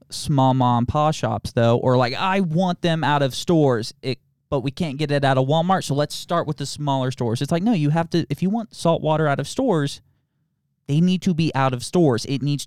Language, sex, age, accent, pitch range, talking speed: English, male, 20-39, American, 125-160 Hz, 245 wpm